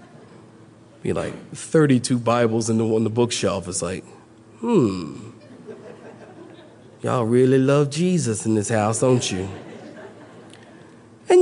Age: 40-59